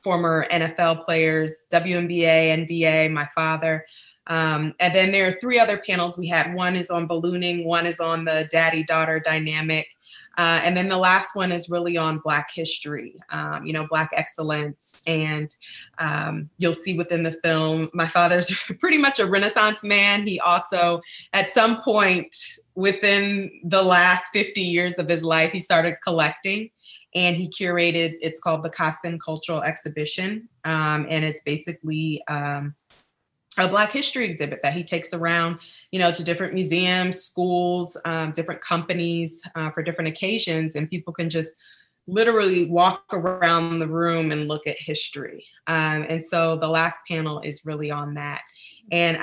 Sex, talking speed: female, 160 wpm